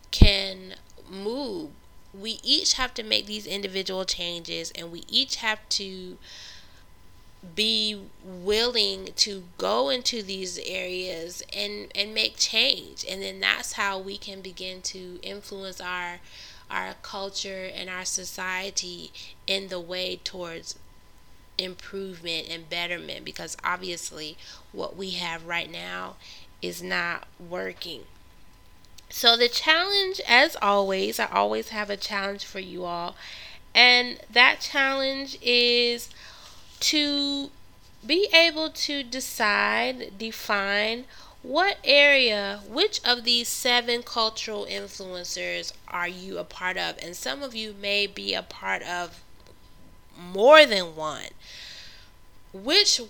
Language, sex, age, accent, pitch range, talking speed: English, female, 20-39, American, 175-230 Hz, 120 wpm